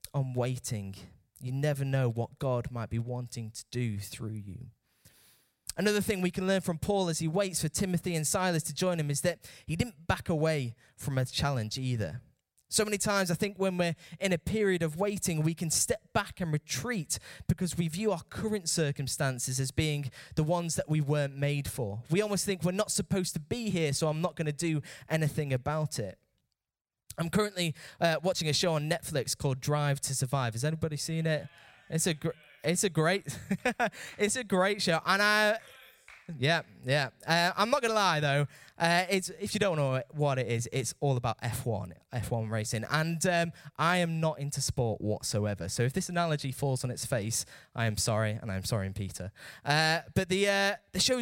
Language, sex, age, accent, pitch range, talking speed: English, male, 10-29, British, 125-180 Hz, 200 wpm